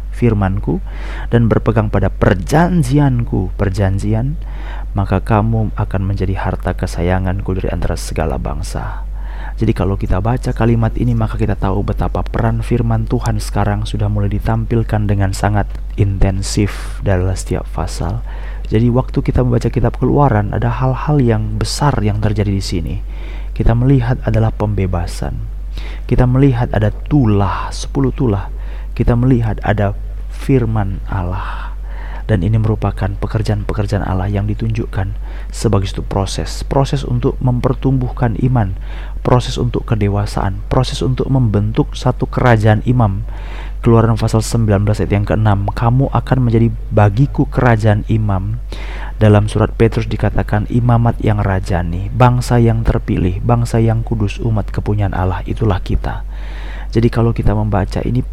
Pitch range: 100-120 Hz